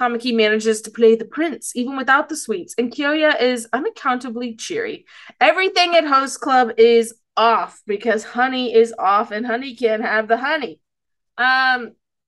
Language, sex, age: English, female, 20-39